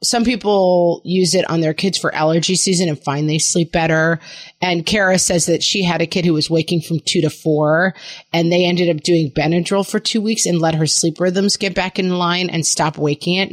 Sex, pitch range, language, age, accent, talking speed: female, 155-190 Hz, English, 30-49, American, 230 wpm